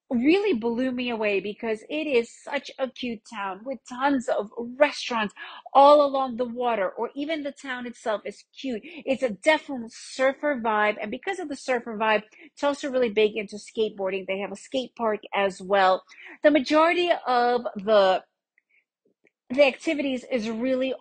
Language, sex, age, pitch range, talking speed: English, female, 40-59, 210-270 Hz, 165 wpm